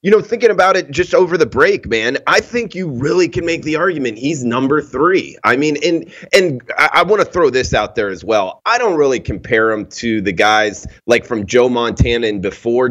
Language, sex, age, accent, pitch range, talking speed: English, male, 30-49, American, 110-135 Hz, 230 wpm